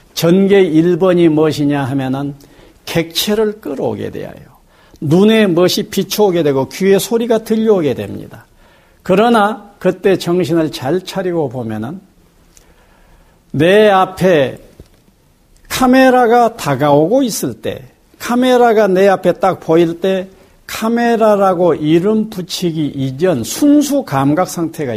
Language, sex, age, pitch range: Korean, male, 60-79, 140-215 Hz